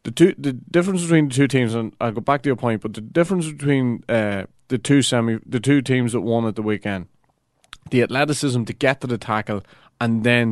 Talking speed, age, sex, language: 230 wpm, 30-49, male, English